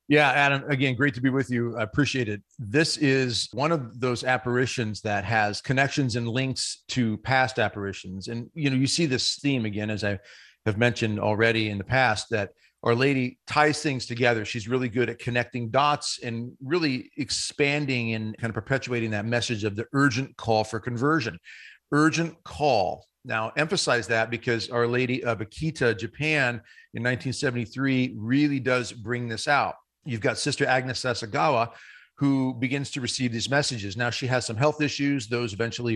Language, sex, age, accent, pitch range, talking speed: English, male, 40-59, American, 115-140 Hz, 175 wpm